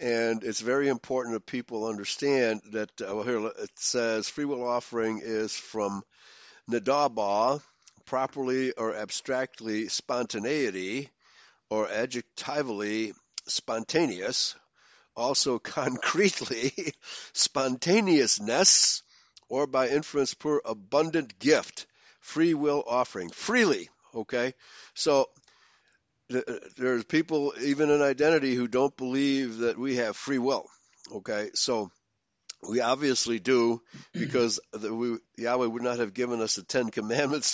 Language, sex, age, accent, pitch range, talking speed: English, male, 60-79, American, 115-145 Hz, 115 wpm